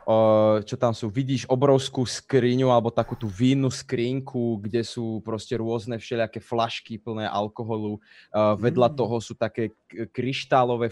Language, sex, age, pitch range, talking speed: Czech, male, 20-39, 110-125 Hz, 130 wpm